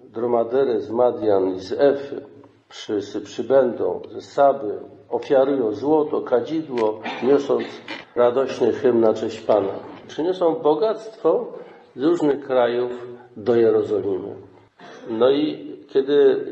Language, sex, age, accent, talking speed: Polish, male, 50-69, native, 105 wpm